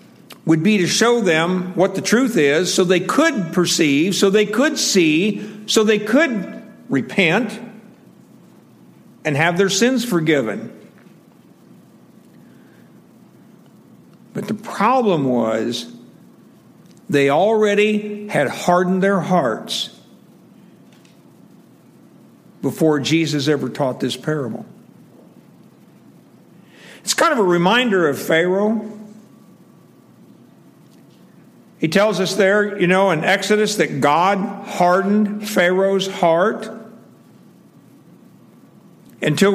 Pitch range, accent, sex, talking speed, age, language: 155-210 Hz, American, male, 95 wpm, 60-79, English